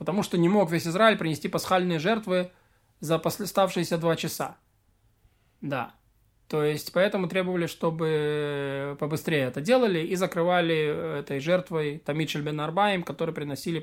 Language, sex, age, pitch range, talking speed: Russian, male, 20-39, 145-205 Hz, 135 wpm